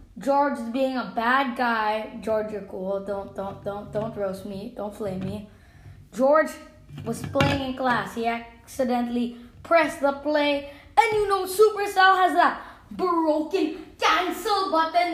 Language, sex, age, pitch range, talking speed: English, female, 20-39, 245-330 Hz, 145 wpm